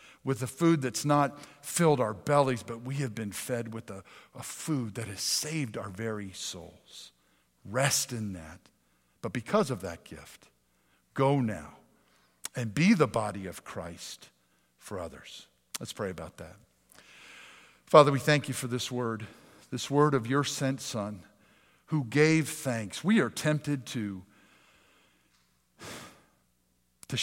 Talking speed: 145 wpm